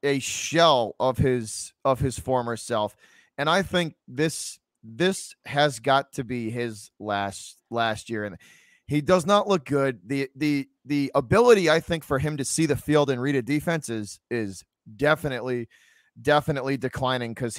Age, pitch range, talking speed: 20-39, 115-150 Hz, 165 wpm